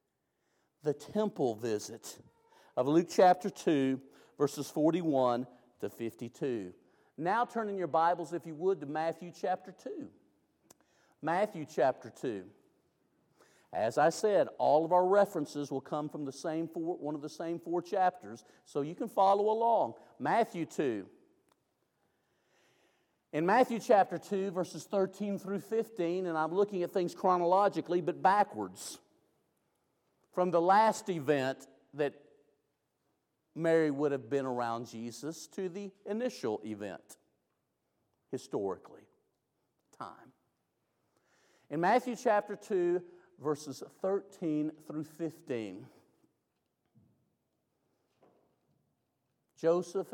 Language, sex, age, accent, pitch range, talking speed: English, male, 50-69, American, 140-190 Hz, 115 wpm